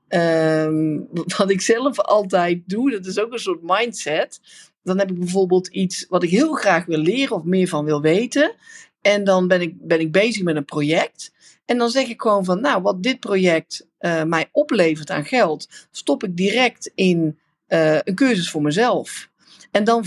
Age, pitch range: 50-69, 170-210 Hz